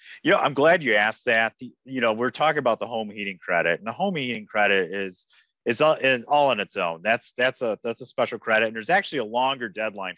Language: Arabic